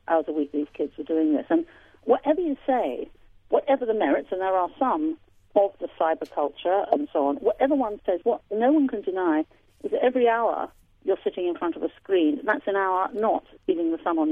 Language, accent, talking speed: English, British, 225 wpm